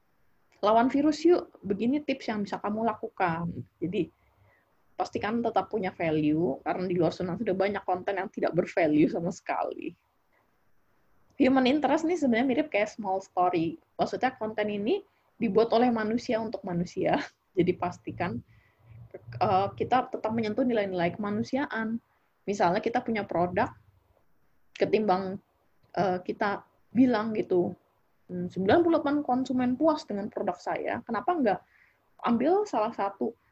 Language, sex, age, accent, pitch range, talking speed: Indonesian, female, 20-39, native, 185-255 Hz, 125 wpm